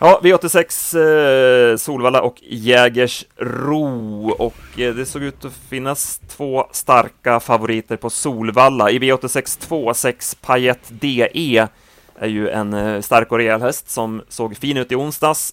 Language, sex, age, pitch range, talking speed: Swedish, male, 30-49, 110-130 Hz, 125 wpm